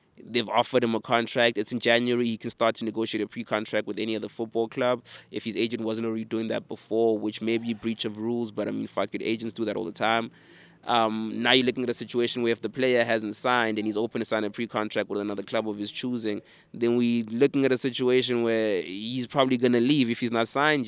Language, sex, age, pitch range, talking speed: English, male, 20-39, 110-120 Hz, 255 wpm